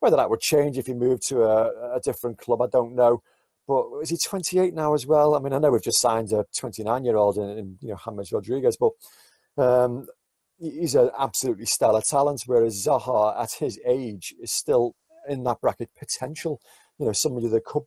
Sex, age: male, 40-59